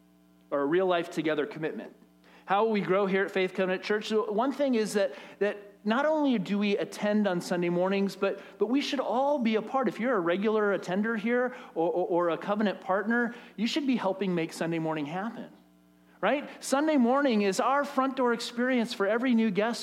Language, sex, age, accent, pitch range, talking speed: English, male, 40-59, American, 175-250 Hz, 205 wpm